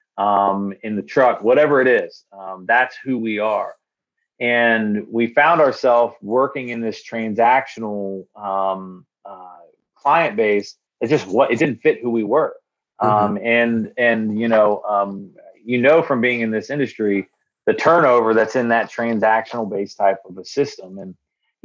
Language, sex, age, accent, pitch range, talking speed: English, male, 30-49, American, 105-120 Hz, 165 wpm